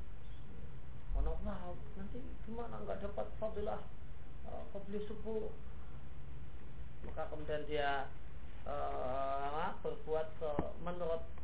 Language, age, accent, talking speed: Indonesian, 30-49, native, 90 wpm